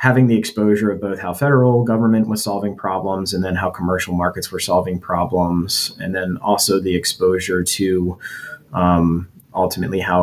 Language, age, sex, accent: English, 20-39, male, American